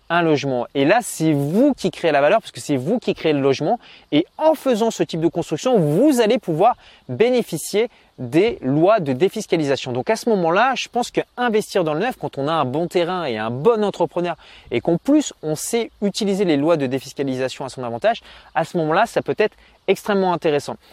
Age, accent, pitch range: 20-39, French, 145-200 Hz